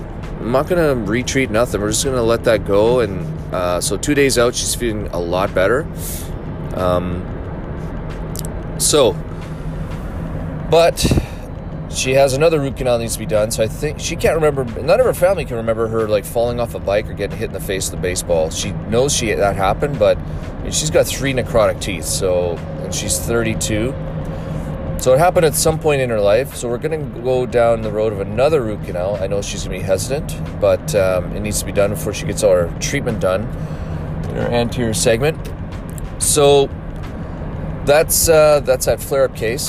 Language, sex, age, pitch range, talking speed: English, male, 30-49, 90-125 Hz, 200 wpm